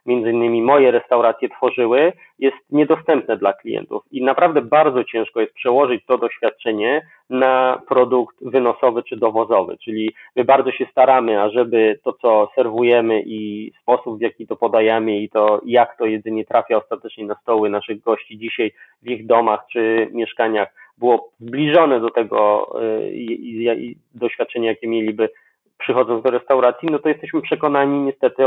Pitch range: 110-130 Hz